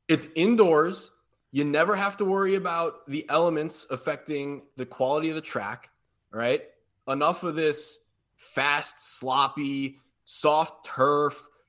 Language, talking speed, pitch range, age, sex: English, 125 wpm, 135-180 Hz, 20-39, male